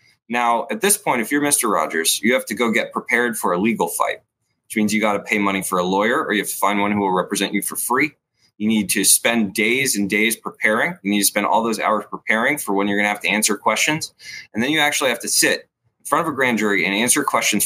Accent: American